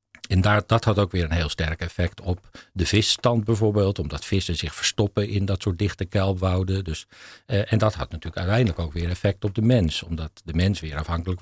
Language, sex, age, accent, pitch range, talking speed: Dutch, male, 50-69, Dutch, 80-100 Hz, 205 wpm